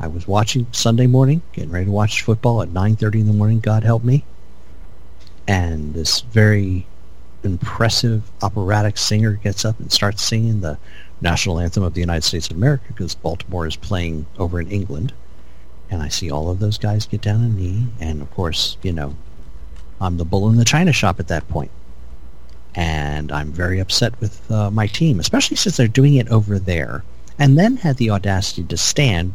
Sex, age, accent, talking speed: male, 50-69, American, 190 wpm